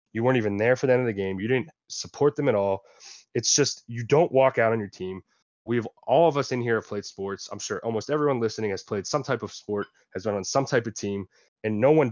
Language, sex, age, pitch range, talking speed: English, male, 20-39, 100-130 Hz, 275 wpm